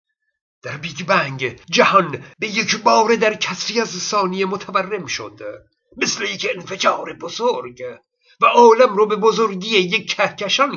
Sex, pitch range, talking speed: male, 170-230 Hz, 135 wpm